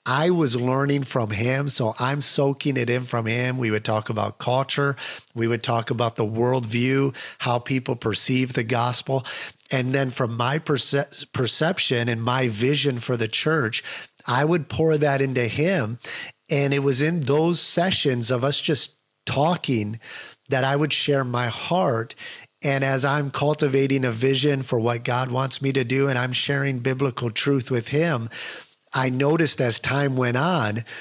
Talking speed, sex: 170 wpm, male